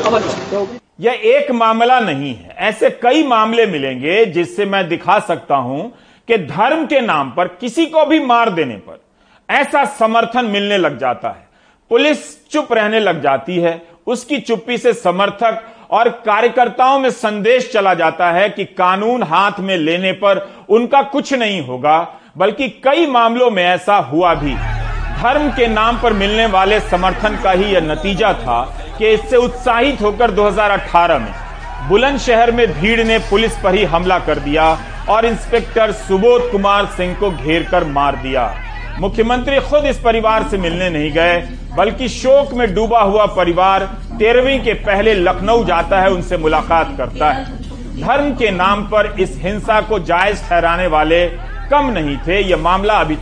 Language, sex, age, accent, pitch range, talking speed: Hindi, male, 40-59, native, 175-235 Hz, 160 wpm